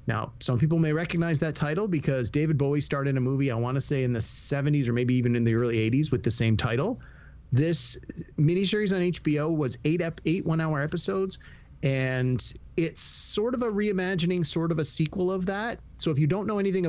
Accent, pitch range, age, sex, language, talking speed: American, 125-160 Hz, 30-49, male, English, 210 wpm